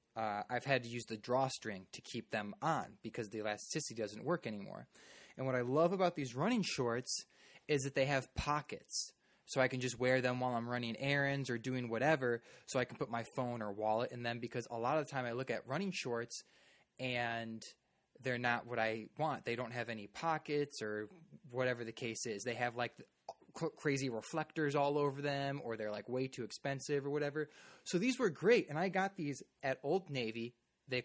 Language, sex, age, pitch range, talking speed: English, male, 20-39, 115-145 Hz, 210 wpm